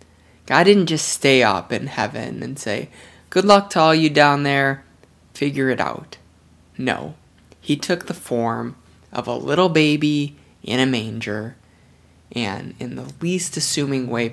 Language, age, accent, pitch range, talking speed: English, 20-39, American, 95-140 Hz, 155 wpm